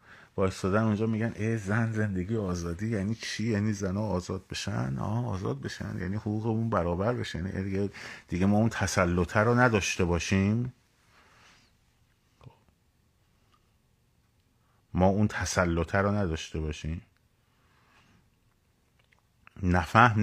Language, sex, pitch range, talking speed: Persian, male, 90-115 Hz, 105 wpm